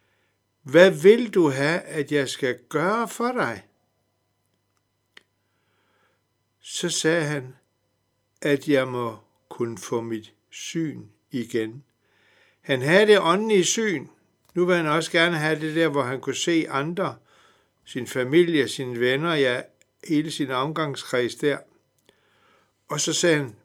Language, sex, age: Danish, male, 60-79